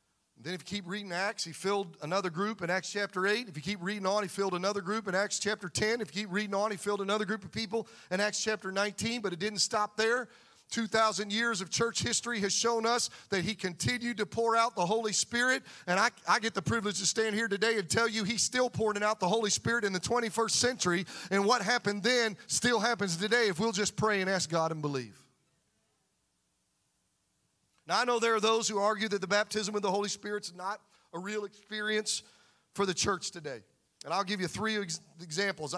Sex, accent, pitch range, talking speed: male, American, 185-220 Hz, 225 wpm